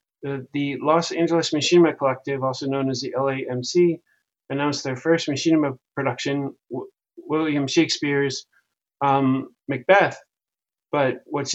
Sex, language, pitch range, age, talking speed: male, English, 130-150 Hz, 30-49, 120 wpm